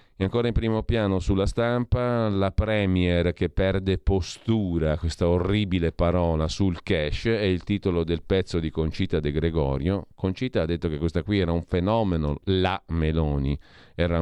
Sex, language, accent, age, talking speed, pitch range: male, Italian, native, 40-59, 160 wpm, 85-110 Hz